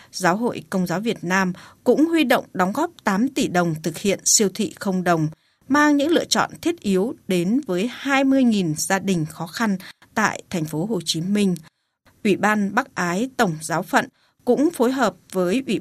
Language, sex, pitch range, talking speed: Vietnamese, female, 175-245 Hz, 195 wpm